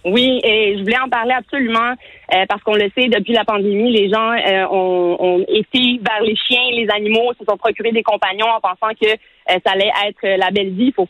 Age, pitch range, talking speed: 30-49, 200-250 Hz, 215 wpm